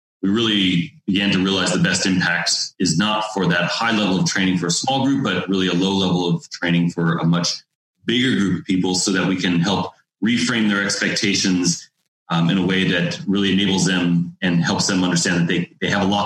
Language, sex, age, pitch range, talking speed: English, male, 30-49, 85-100 Hz, 220 wpm